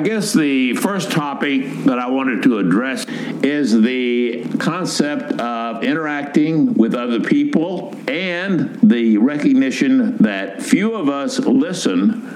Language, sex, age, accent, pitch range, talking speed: English, male, 60-79, American, 200-275 Hz, 125 wpm